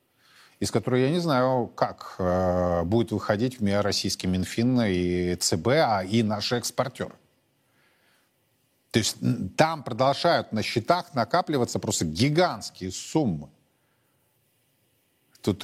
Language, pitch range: Russian, 110-140 Hz